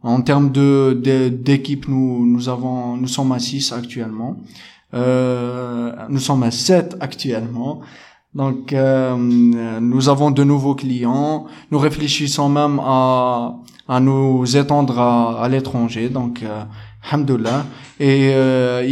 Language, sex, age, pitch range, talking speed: French, male, 20-39, 130-150 Hz, 130 wpm